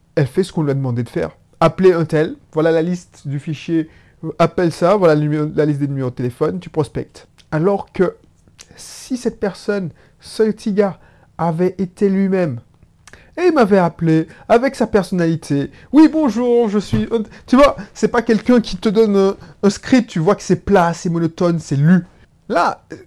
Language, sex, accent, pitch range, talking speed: French, male, French, 150-215 Hz, 185 wpm